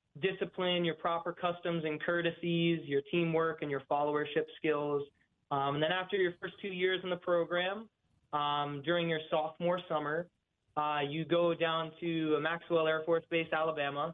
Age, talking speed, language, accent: 20-39, 160 wpm, English, American